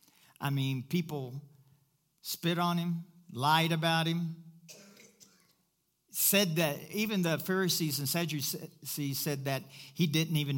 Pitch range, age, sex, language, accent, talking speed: 145-185 Hz, 50-69, male, English, American, 120 wpm